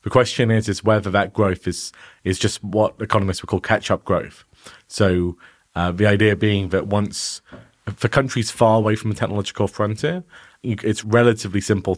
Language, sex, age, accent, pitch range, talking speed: English, male, 30-49, British, 95-115 Hz, 170 wpm